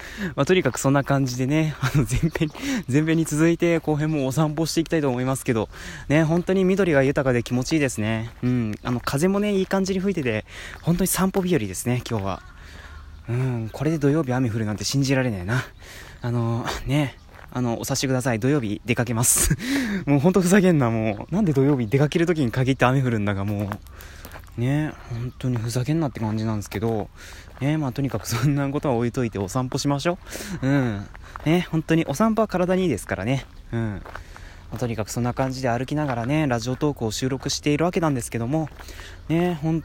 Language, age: Japanese, 20-39